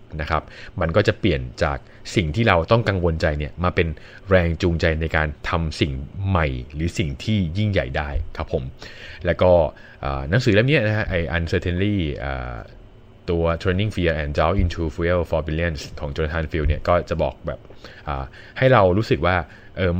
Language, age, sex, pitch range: Thai, 20-39, male, 80-105 Hz